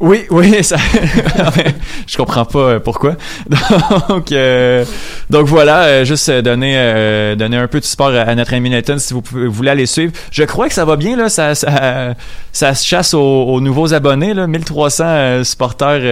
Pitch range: 120-160 Hz